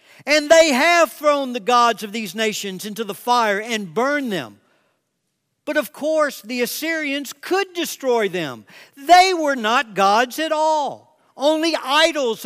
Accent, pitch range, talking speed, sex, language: American, 170-285 Hz, 150 wpm, male, English